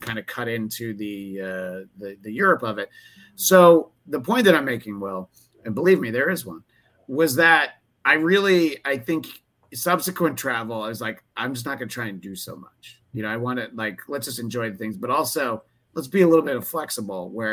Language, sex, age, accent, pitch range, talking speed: English, male, 30-49, American, 100-130 Hz, 225 wpm